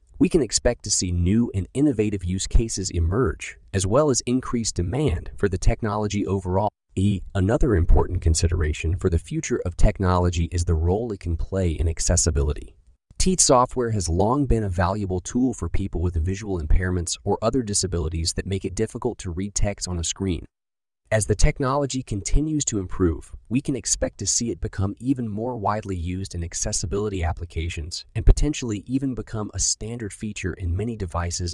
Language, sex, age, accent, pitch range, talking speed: English, male, 30-49, American, 90-115 Hz, 175 wpm